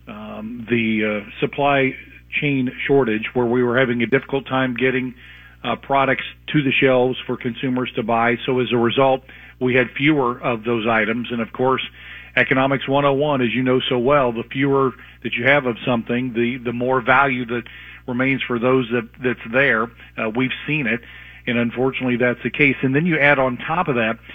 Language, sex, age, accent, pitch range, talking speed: English, male, 50-69, American, 120-135 Hz, 200 wpm